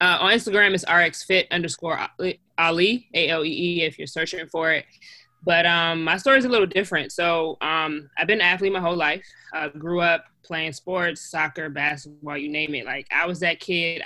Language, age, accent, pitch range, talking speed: English, 20-39, American, 155-185 Hz, 195 wpm